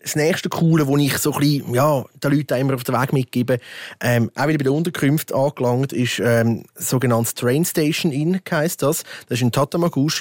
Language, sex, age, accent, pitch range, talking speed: German, male, 30-49, Austrian, 120-145 Hz, 205 wpm